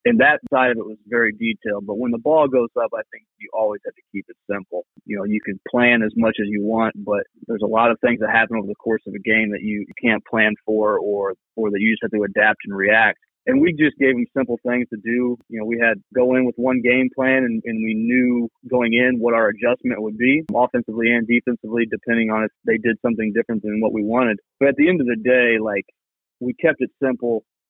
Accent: American